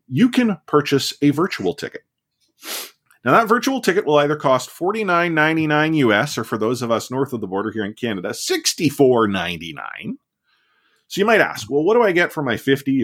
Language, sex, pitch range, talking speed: English, male, 110-145 Hz, 195 wpm